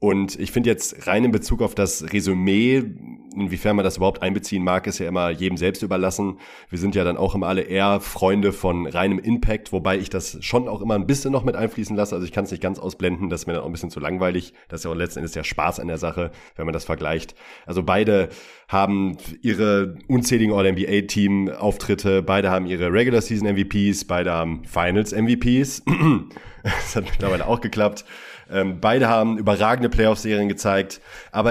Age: 30-49